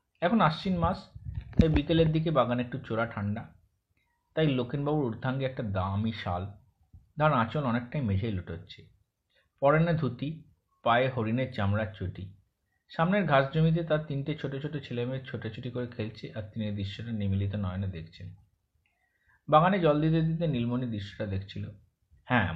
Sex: male